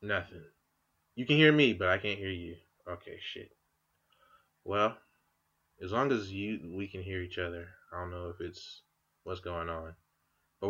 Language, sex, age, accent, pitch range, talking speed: English, male, 20-39, American, 95-150 Hz, 175 wpm